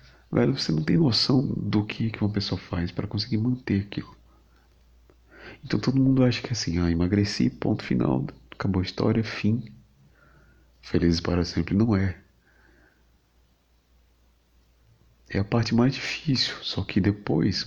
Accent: Brazilian